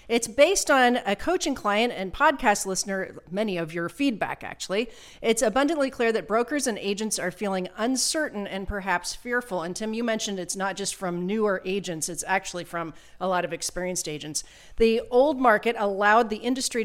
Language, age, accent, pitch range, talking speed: English, 40-59, American, 185-255 Hz, 180 wpm